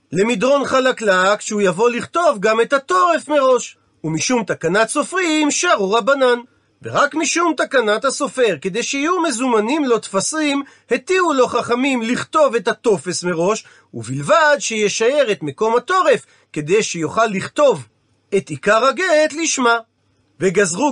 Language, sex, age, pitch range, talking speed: Hebrew, male, 40-59, 200-280 Hz, 125 wpm